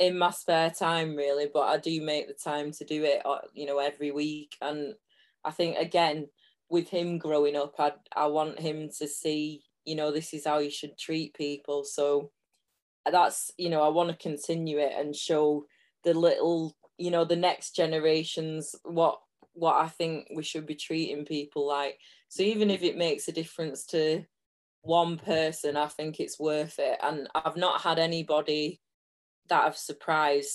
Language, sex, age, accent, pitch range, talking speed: English, female, 20-39, British, 145-165 Hz, 180 wpm